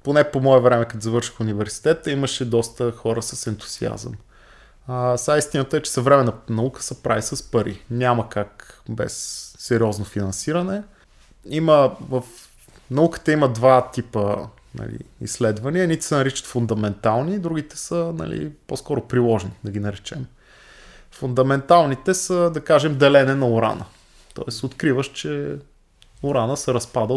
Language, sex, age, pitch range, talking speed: Bulgarian, male, 20-39, 110-150 Hz, 135 wpm